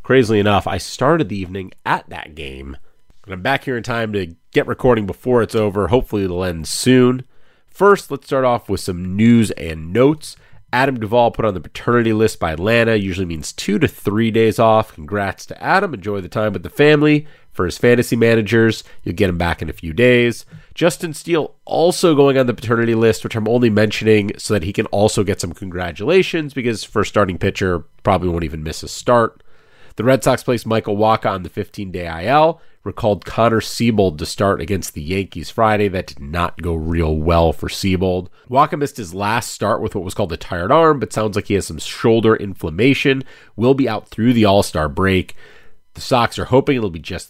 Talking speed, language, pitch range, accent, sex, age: 205 wpm, English, 95-125 Hz, American, male, 30-49